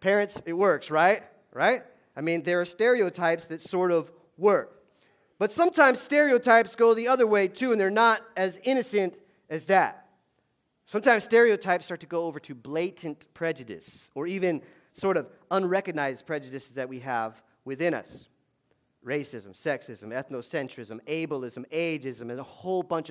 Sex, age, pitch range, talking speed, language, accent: male, 40-59, 135-195 Hz, 150 wpm, English, American